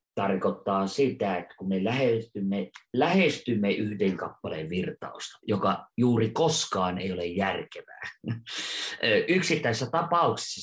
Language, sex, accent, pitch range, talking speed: Finnish, male, native, 95-115 Hz, 100 wpm